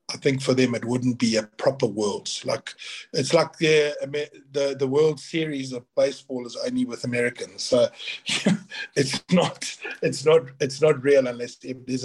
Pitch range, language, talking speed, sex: 130-165 Hz, English, 170 wpm, male